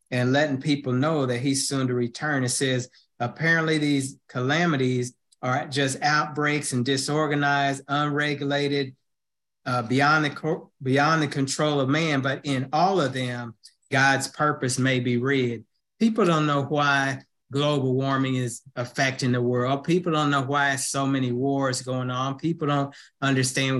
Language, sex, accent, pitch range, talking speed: English, male, American, 130-145 Hz, 155 wpm